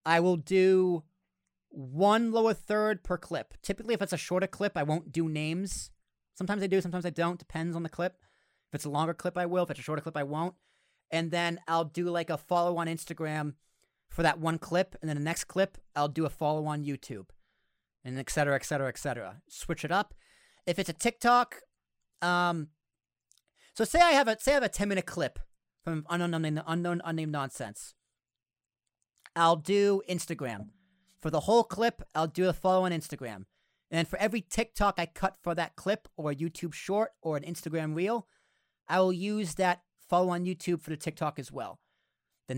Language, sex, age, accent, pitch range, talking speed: English, male, 30-49, American, 145-185 Hz, 195 wpm